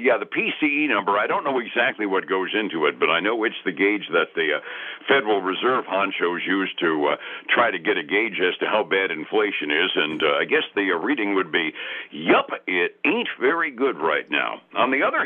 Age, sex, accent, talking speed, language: 60-79, male, American, 225 wpm, English